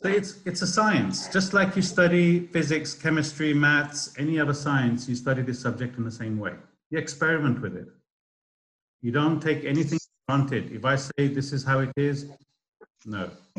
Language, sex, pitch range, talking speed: English, male, 115-145 Hz, 180 wpm